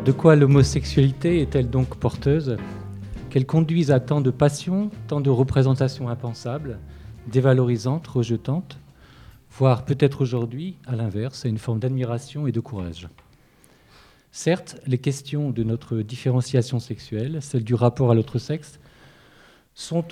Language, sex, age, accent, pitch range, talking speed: French, male, 40-59, French, 115-145 Hz, 130 wpm